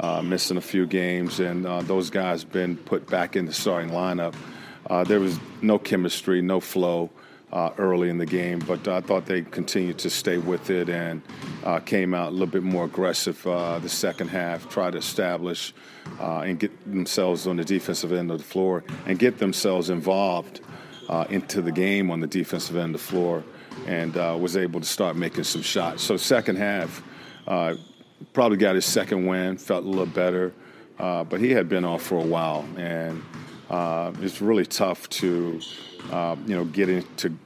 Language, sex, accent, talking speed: English, male, American, 195 wpm